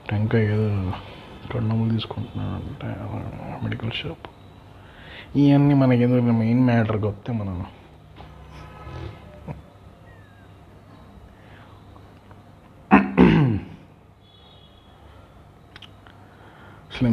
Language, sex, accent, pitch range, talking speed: Telugu, male, native, 90-115 Hz, 55 wpm